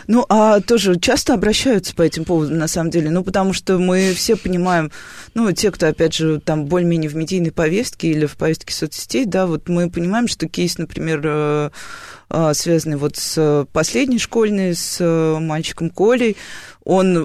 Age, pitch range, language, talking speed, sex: 20-39, 160-195 Hz, Russian, 165 wpm, female